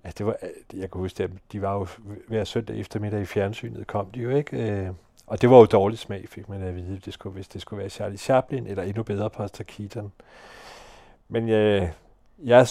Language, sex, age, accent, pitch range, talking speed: Danish, male, 40-59, native, 100-115 Hz, 200 wpm